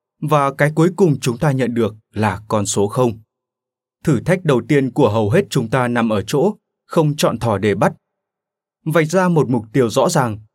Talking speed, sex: 205 wpm, male